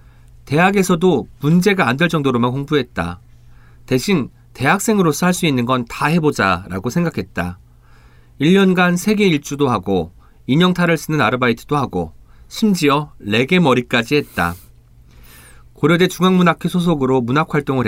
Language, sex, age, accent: Korean, male, 40-59, native